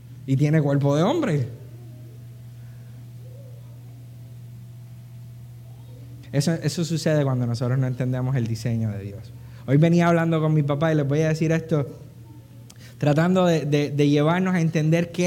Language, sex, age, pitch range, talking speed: Spanish, male, 20-39, 125-165 Hz, 140 wpm